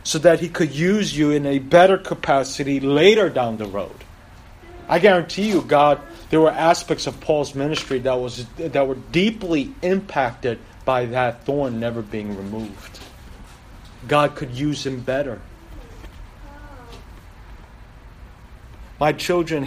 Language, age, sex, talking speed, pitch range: English, 30-49, male, 130 wpm, 105-155 Hz